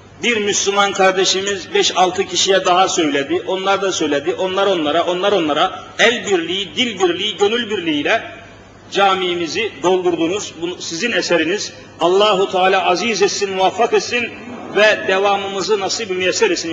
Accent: native